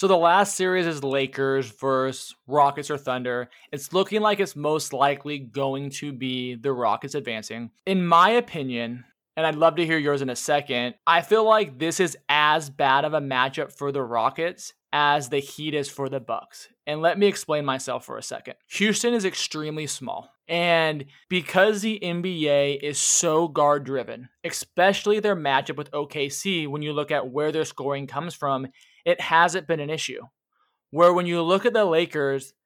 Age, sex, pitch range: 20-39, male, 140-175 Hz